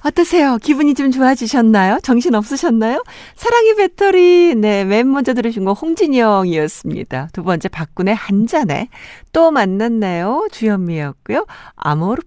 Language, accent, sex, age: Korean, native, female, 60-79